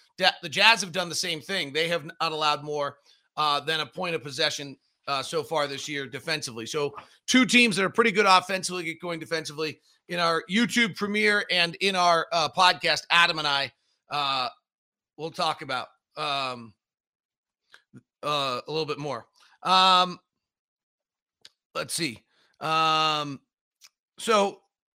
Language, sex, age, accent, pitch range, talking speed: English, male, 40-59, American, 155-200 Hz, 150 wpm